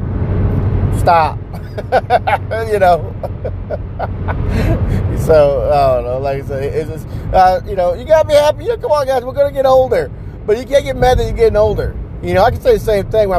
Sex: male